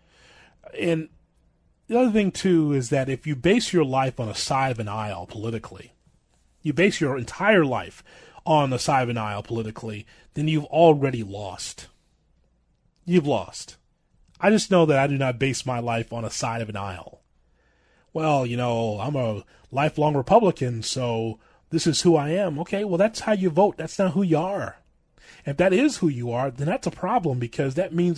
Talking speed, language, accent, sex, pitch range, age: 190 wpm, English, American, male, 120-175 Hz, 30-49